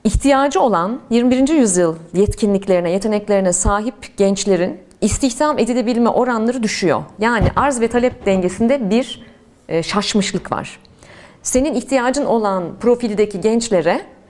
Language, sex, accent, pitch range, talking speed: Turkish, female, native, 200-270 Hz, 110 wpm